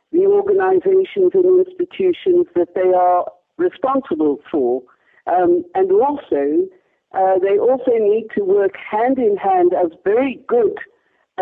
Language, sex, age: English, female, 50-69